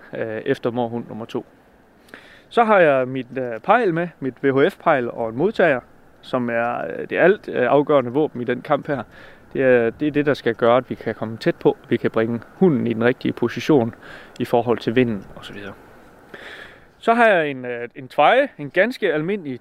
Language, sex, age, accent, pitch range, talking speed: Danish, male, 30-49, native, 120-155 Hz, 190 wpm